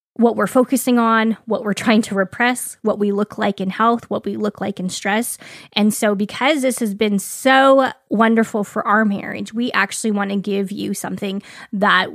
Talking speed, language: 200 wpm, English